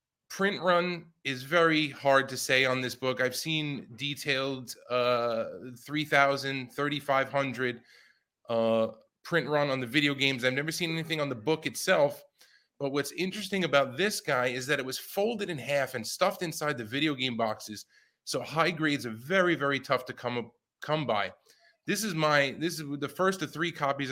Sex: male